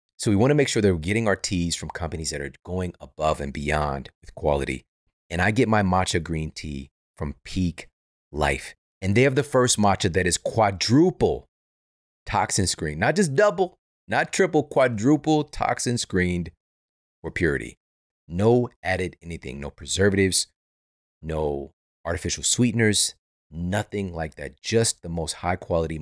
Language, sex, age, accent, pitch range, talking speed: English, male, 30-49, American, 80-110 Hz, 155 wpm